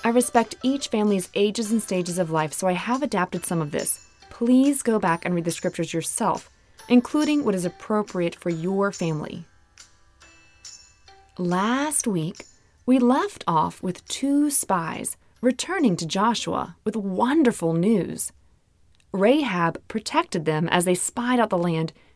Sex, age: female, 20-39